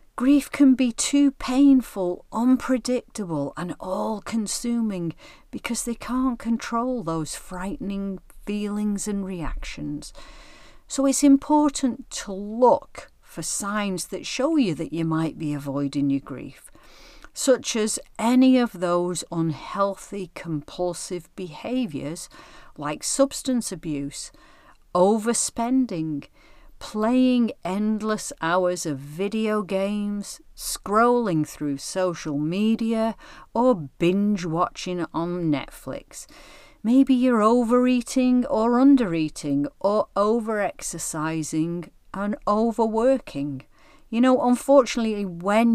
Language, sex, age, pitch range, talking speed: English, female, 50-69, 170-240 Hz, 95 wpm